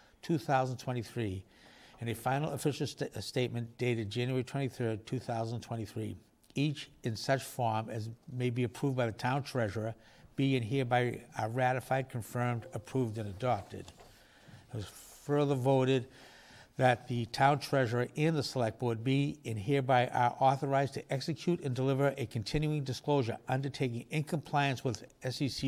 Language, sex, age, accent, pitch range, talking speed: English, male, 60-79, American, 115-135 Hz, 145 wpm